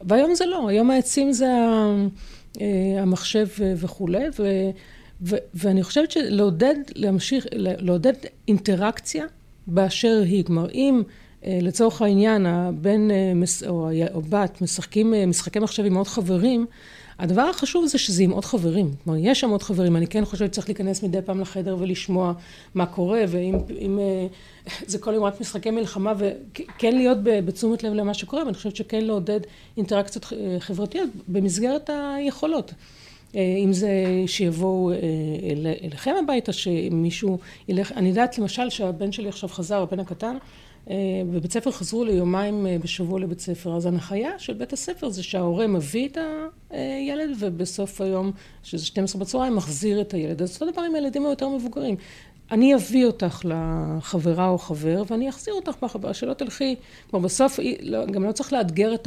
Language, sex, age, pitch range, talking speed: Hebrew, female, 40-59, 185-230 Hz, 150 wpm